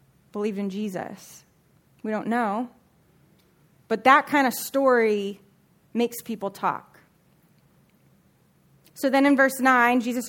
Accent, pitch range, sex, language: American, 215-260 Hz, female, English